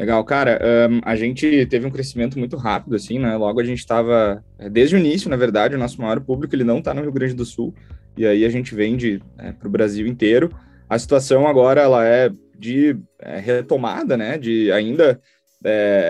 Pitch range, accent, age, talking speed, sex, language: 110-130 Hz, Brazilian, 20-39, 205 wpm, male, Portuguese